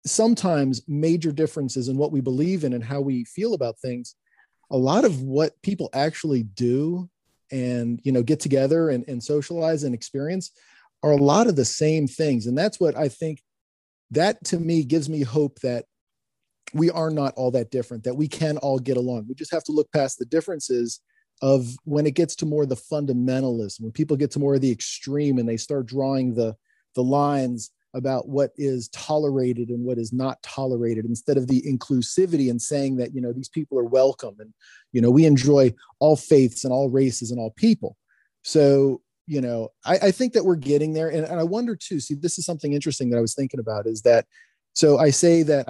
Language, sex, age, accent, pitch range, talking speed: English, male, 40-59, American, 125-155 Hz, 210 wpm